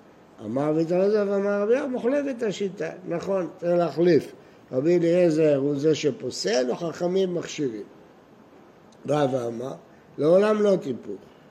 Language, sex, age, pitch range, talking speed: Hebrew, male, 60-79, 140-190 Hz, 130 wpm